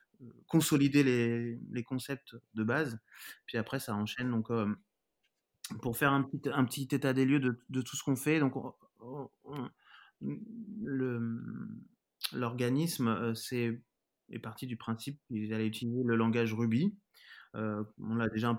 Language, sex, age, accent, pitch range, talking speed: French, male, 20-39, French, 110-125 Hz, 155 wpm